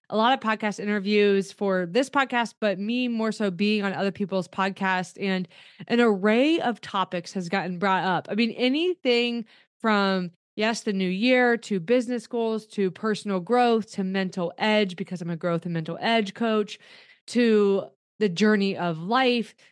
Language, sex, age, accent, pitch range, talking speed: English, female, 20-39, American, 195-245 Hz, 170 wpm